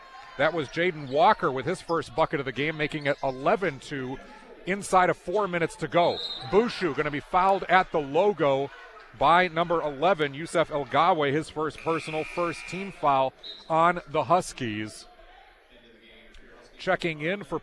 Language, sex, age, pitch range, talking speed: English, male, 40-59, 145-175 Hz, 155 wpm